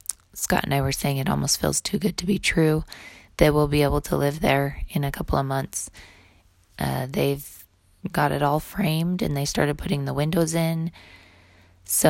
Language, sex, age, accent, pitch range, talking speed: English, female, 20-39, American, 100-160 Hz, 195 wpm